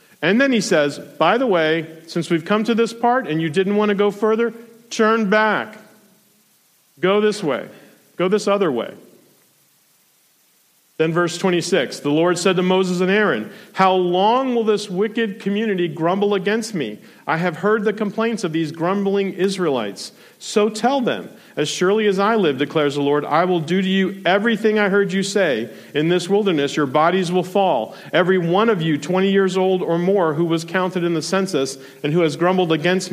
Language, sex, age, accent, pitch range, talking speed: English, male, 40-59, American, 160-205 Hz, 190 wpm